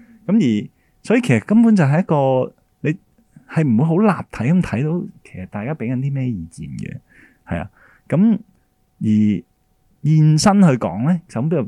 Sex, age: male, 20-39